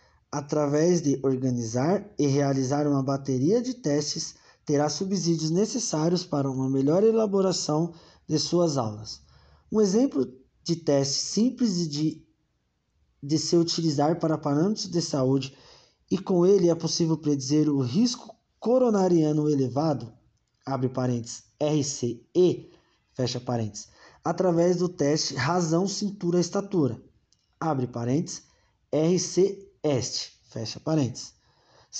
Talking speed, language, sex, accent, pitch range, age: 105 wpm, Portuguese, male, Brazilian, 135-175 Hz, 20-39